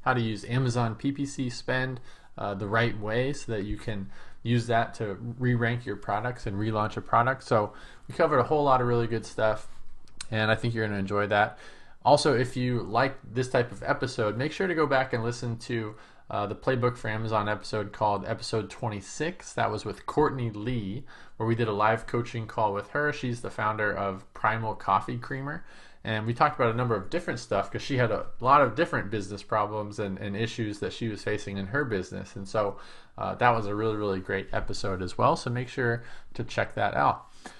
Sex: male